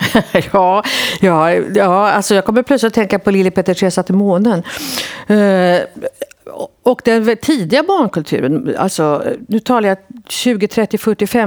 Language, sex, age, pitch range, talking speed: Swedish, female, 50-69, 170-245 Hz, 135 wpm